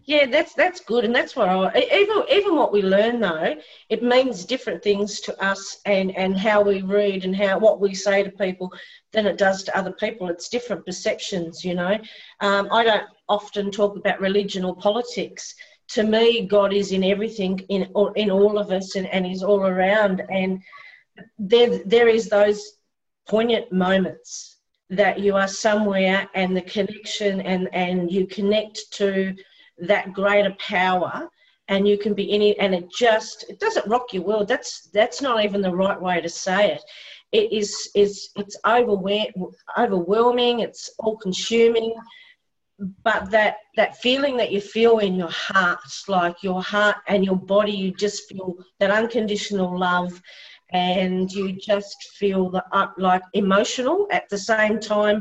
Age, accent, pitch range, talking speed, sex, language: 40-59, Australian, 190-220 Hz, 165 wpm, female, English